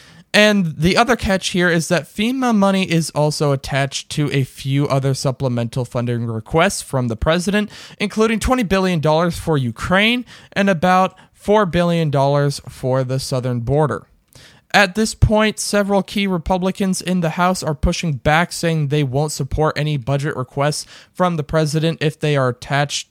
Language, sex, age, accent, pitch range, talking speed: English, male, 20-39, American, 135-175 Hz, 160 wpm